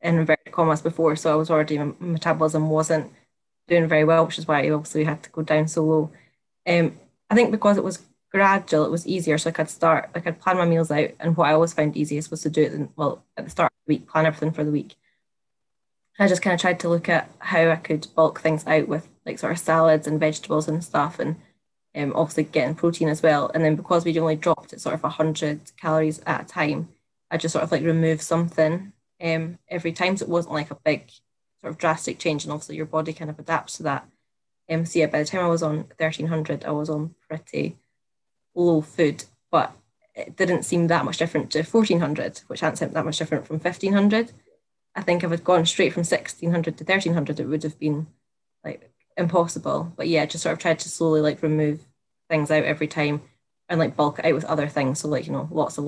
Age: 20-39